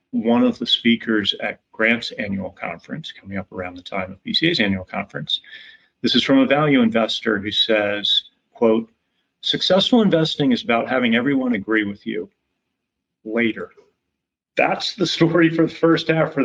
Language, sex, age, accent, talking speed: English, male, 40-59, American, 160 wpm